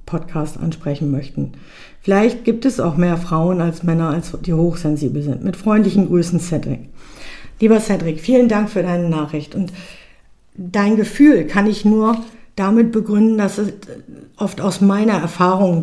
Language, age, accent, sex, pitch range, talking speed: German, 50-69, German, female, 170-200 Hz, 150 wpm